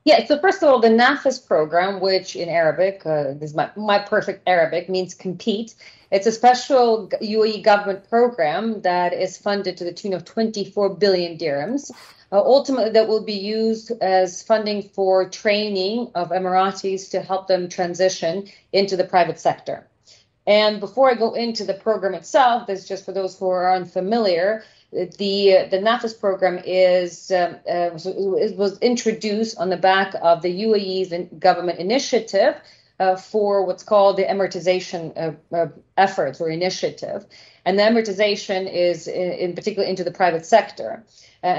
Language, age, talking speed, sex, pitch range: English, 40-59, 160 wpm, female, 180-215 Hz